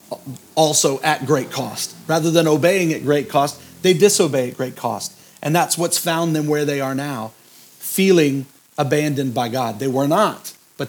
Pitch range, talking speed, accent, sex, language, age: 125-155 Hz, 175 wpm, American, male, English, 40-59